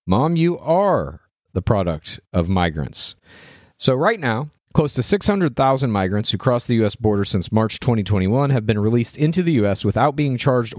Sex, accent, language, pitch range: male, American, English, 100-130 Hz